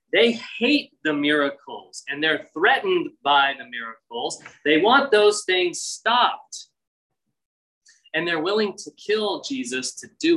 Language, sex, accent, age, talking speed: English, male, American, 20-39, 135 wpm